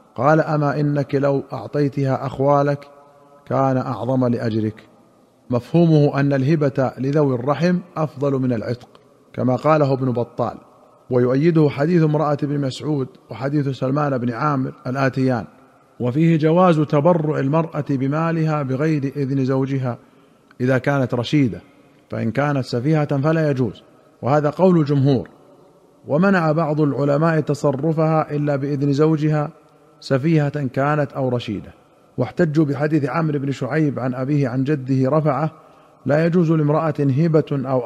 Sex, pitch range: male, 130-155 Hz